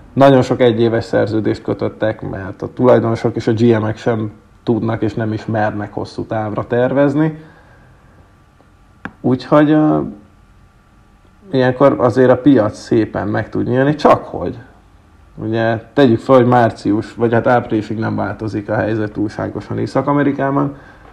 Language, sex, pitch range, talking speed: Hungarian, male, 105-130 Hz, 130 wpm